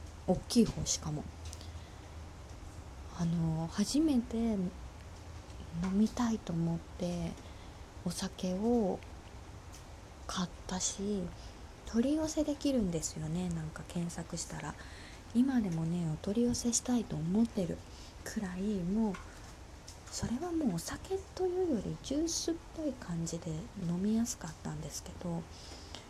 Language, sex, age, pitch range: Japanese, female, 20-39, 160-230 Hz